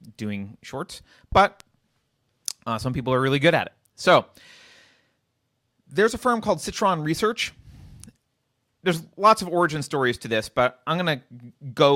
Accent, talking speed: American, 145 wpm